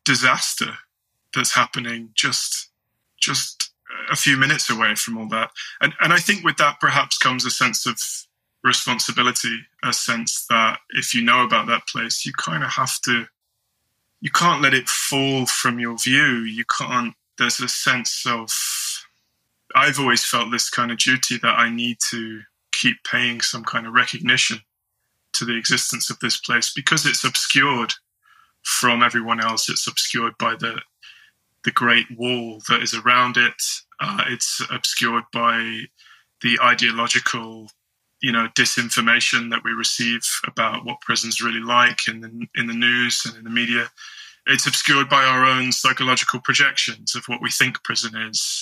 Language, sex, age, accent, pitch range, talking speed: English, male, 20-39, British, 115-125 Hz, 165 wpm